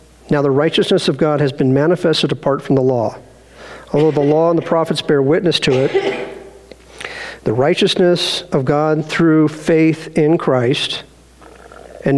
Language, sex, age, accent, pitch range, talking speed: English, male, 50-69, American, 135-170 Hz, 155 wpm